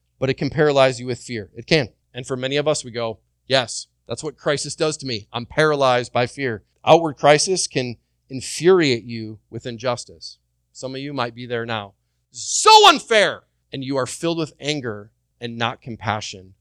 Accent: American